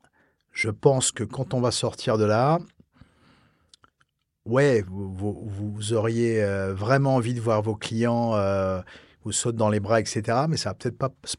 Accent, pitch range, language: French, 105-135 Hz, French